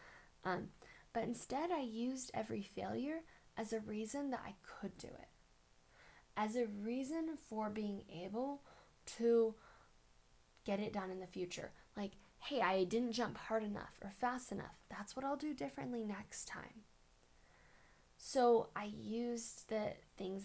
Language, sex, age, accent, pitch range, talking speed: English, female, 10-29, American, 195-245 Hz, 145 wpm